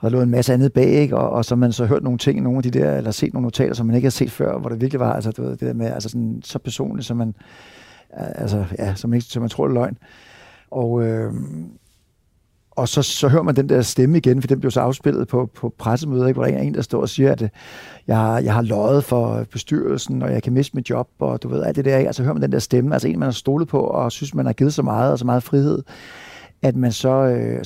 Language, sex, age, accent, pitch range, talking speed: Danish, male, 60-79, native, 115-135 Hz, 285 wpm